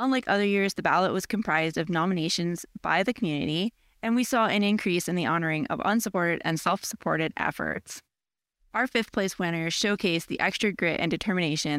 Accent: American